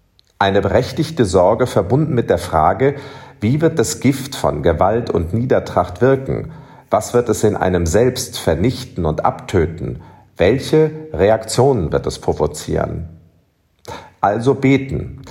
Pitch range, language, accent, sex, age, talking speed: 95-130 Hz, German, German, male, 40-59, 125 wpm